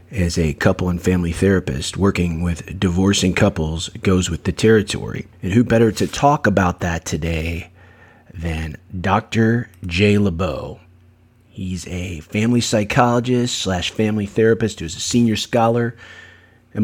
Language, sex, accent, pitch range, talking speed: English, male, American, 90-110 Hz, 135 wpm